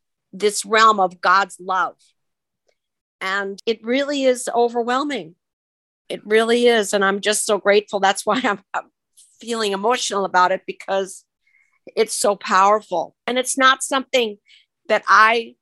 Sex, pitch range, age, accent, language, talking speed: female, 185-225 Hz, 50-69, American, English, 140 wpm